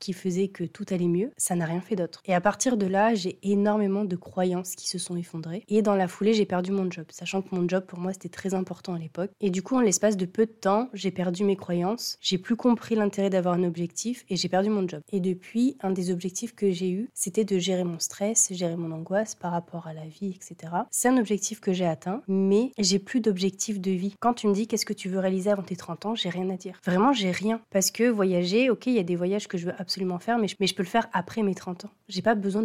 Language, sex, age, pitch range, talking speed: French, female, 20-39, 180-210 Hz, 275 wpm